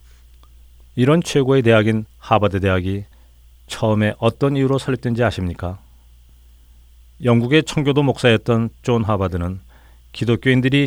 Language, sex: Korean, male